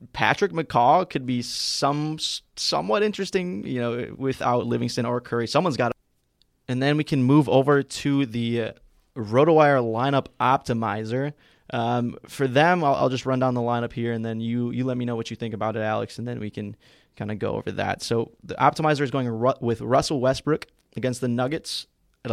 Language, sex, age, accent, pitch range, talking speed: English, male, 20-39, American, 115-135 Hz, 200 wpm